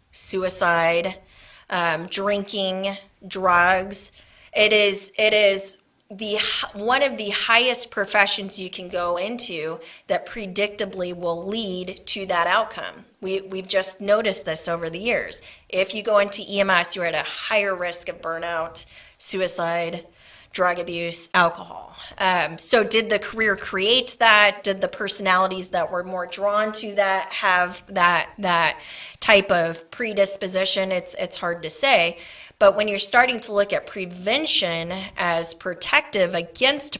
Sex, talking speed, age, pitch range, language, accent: female, 140 wpm, 20-39, 180-215 Hz, English, American